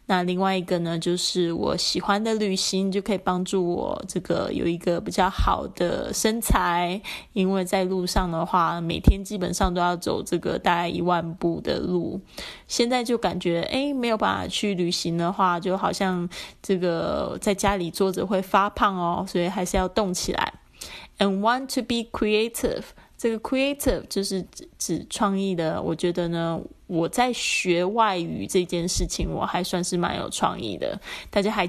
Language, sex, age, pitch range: Chinese, female, 20-39, 175-200 Hz